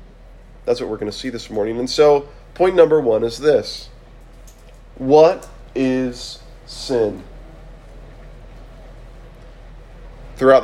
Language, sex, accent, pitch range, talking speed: English, male, American, 120-165 Hz, 105 wpm